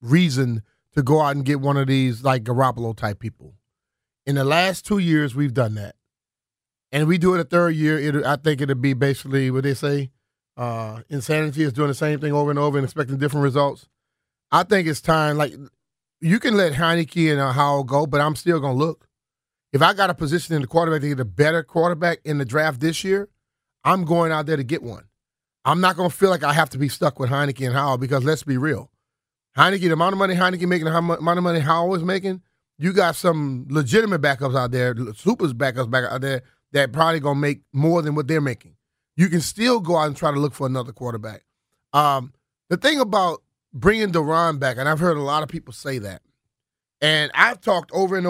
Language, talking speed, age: English, 230 wpm, 30-49